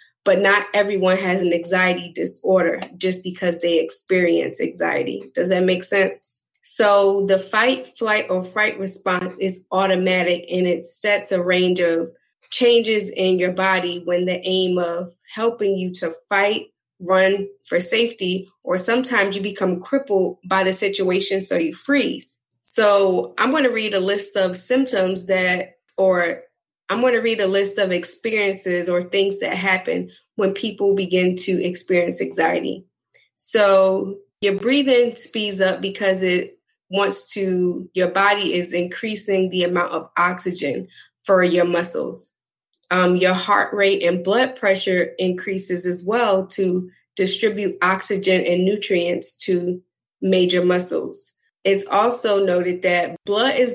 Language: English